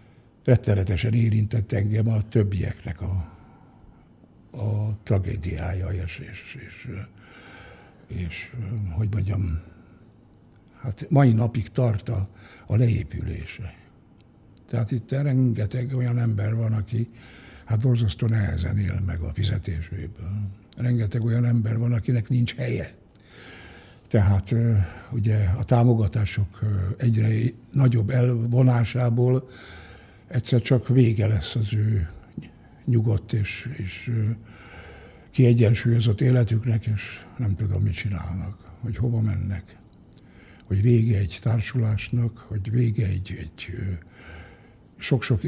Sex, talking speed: male, 100 wpm